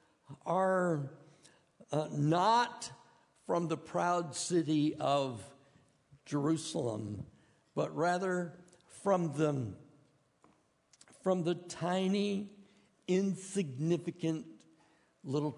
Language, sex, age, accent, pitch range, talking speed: English, male, 60-79, American, 135-190 Hz, 70 wpm